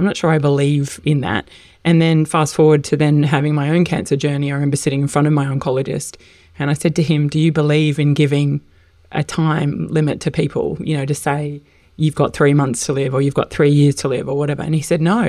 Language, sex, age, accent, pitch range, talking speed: English, female, 20-39, Australian, 145-160 Hz, 250 wpm